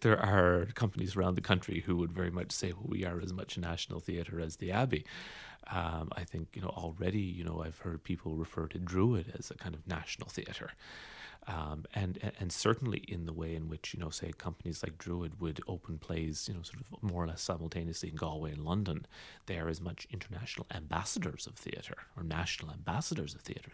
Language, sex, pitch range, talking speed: English, male, 80-110 Hz, 215 wpm